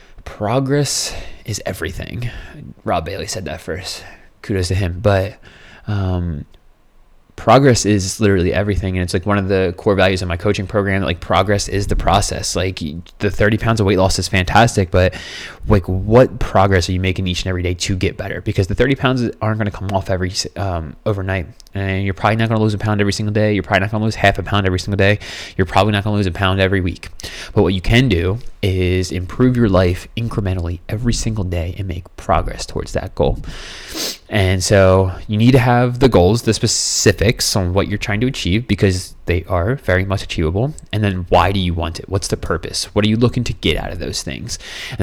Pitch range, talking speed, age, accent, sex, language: 90-105 Hz, 215 wpm, 20-39, American, male, English